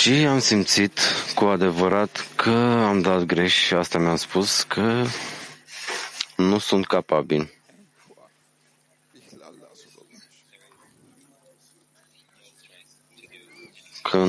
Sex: male